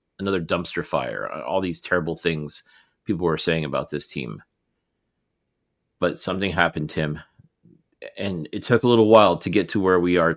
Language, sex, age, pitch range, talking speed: English, male, 30-49, 90-115 Hz, 175 wpm